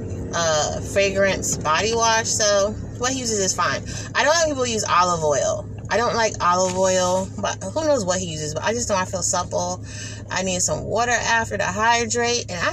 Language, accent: English, American